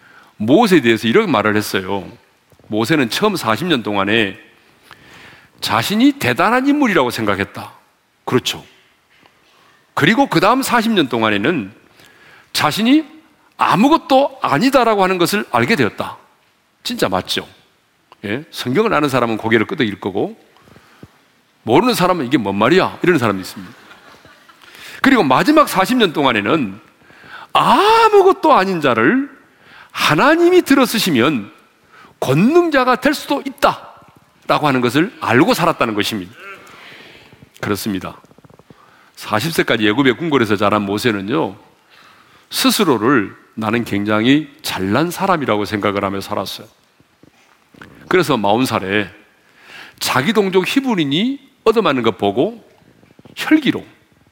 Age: 40-59